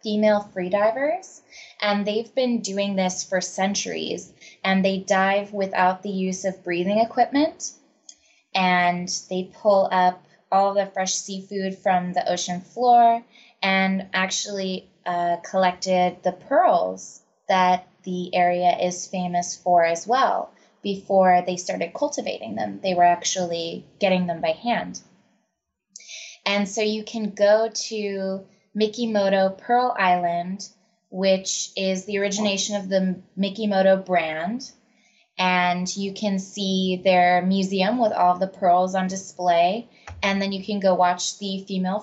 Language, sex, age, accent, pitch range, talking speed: English, female, 20-39, American, 185-215 Hz, 135 wpm